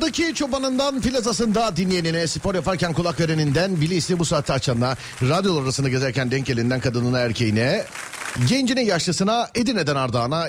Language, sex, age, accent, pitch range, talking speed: Turkish, male, 40-59, native, 120-180 Hz, 130 wpm